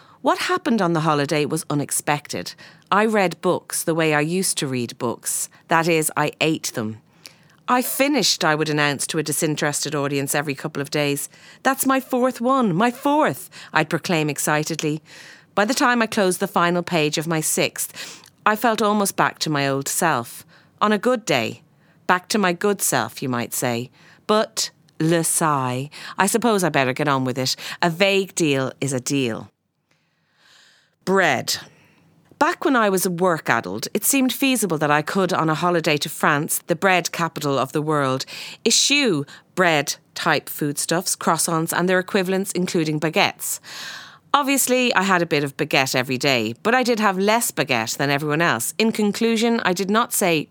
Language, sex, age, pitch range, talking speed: English, female, 40-59, 150-195 Hz, 180 wpm